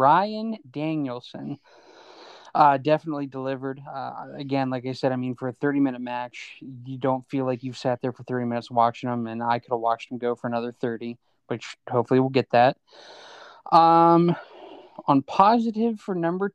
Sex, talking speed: male, 175 wpm